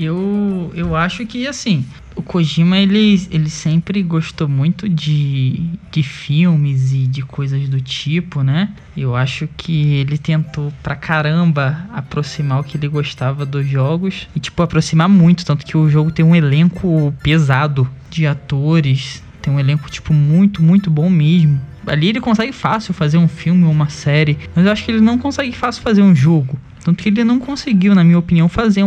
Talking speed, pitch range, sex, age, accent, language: 180 wpm, 145-175 Hz, male, 10-29, Brazilian, Portuguese